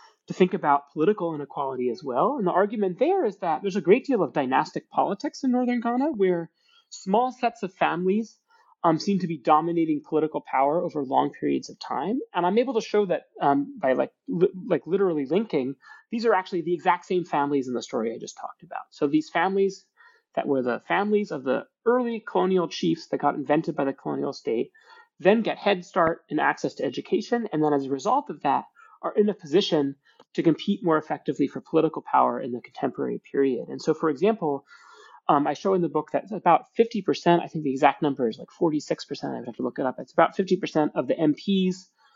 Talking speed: 215 wpm